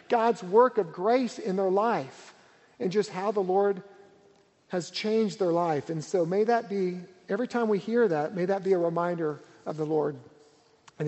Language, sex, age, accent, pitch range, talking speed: English, male, 50-69, American, 175-220 Hz, 190 wpm